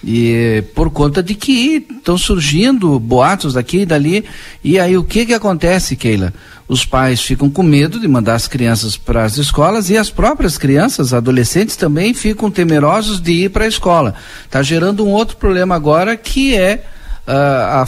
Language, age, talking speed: Portuguese, 50-69, 180 wpm